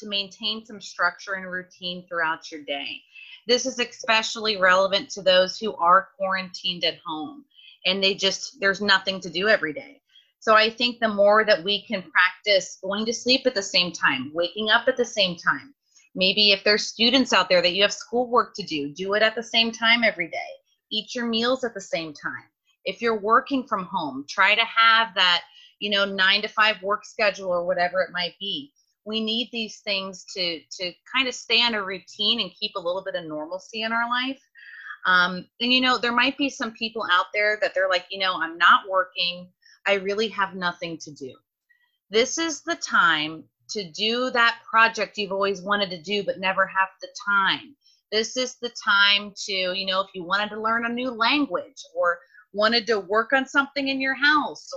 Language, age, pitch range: English, 30-49, 185-235 Hz